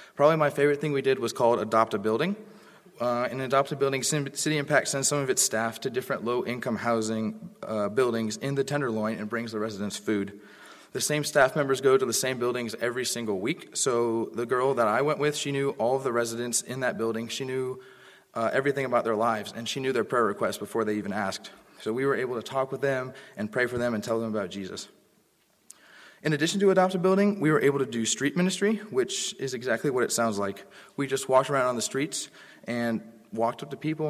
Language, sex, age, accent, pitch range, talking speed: English, male, 30-49, American, 115-145 Hz, 220 wpm